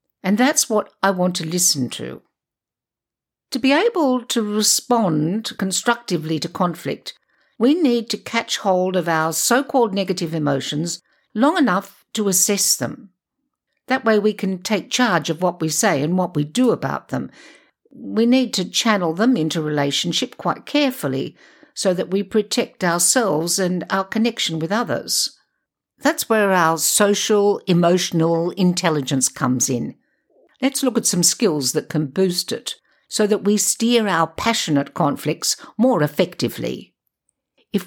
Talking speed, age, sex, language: 145 wpm, 60-79, female, English